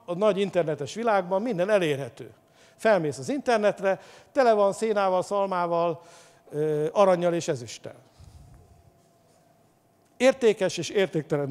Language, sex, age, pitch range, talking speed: English, male, 60-79, 155-220 Hz, 100 wpm